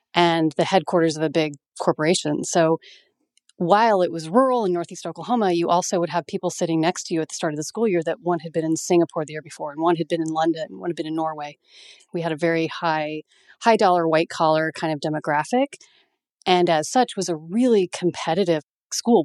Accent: American